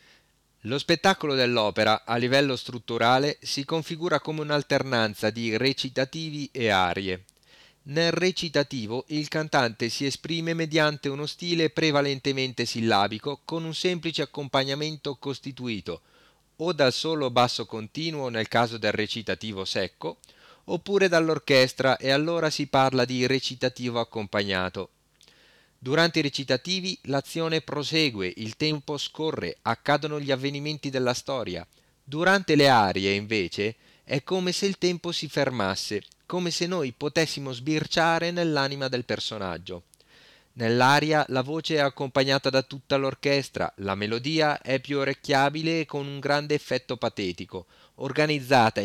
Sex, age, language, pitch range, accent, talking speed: male, 40-59, Italian, 120-155 Hz, native, 125 wpm